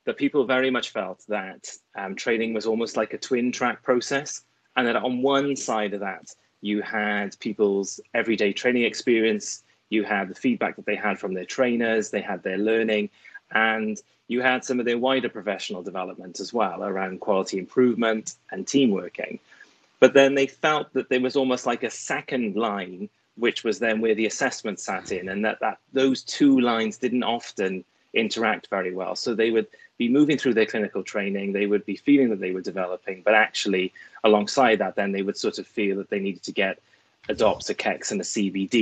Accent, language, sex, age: British, English, male, 30-49